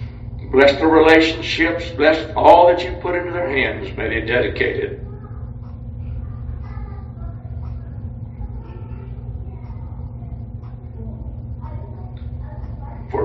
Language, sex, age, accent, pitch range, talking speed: English, male, 60-79, American, 115-175 Hz, 70 wpm